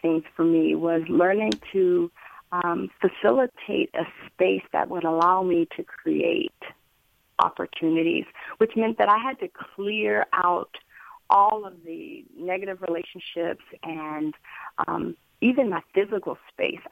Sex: female